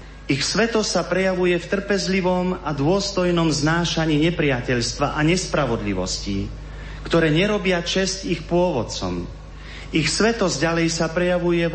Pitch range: 120-165 Hz